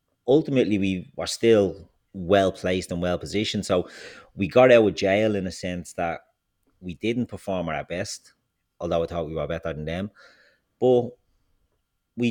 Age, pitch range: 30-49, 90-110 Hz